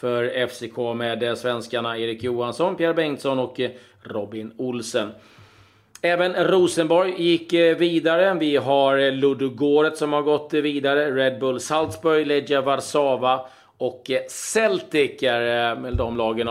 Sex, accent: male, native